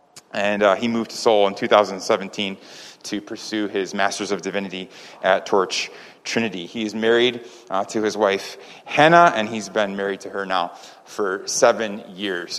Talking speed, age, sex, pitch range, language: 165 wpm, 30-49, male, 100-120 Hz, English